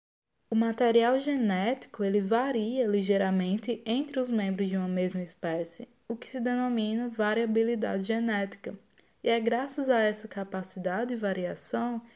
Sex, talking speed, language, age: female, 130 wpm, Portuguese, 10-29